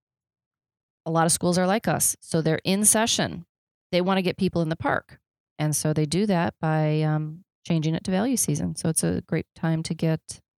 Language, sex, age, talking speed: English, female, 30-49, 215 wpm